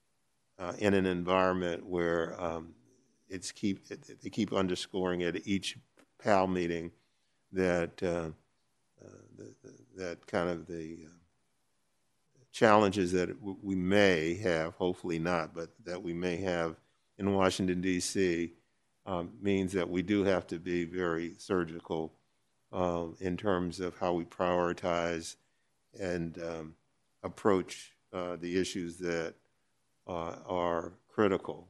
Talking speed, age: 130 wpm, 50-69